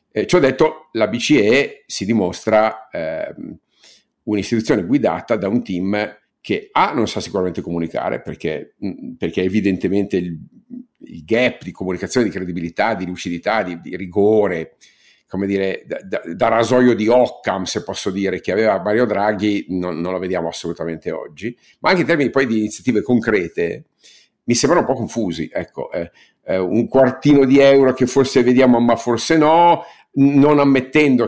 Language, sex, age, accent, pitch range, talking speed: Italian, male, 50-69, native, 100-125 Hz, 160 wpm